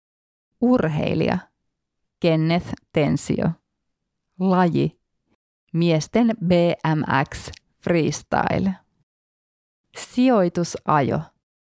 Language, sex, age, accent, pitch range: Finnish, female, 30-49, native, 145-200 Hz